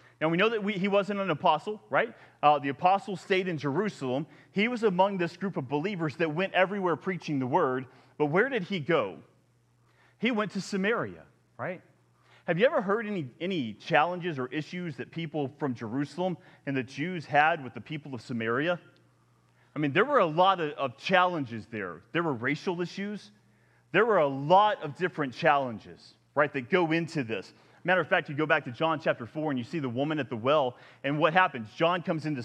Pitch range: 135-180 Hz